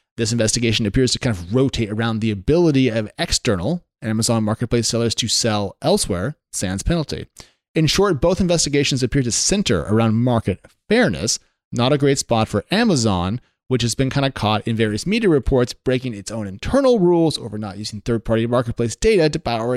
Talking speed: 180 wpm